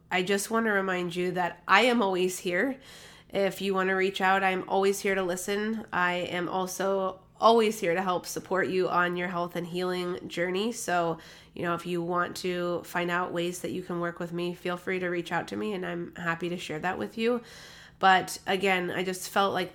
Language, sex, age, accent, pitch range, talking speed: English, female, 20-39, American, 175-190 Hz, 225 wpm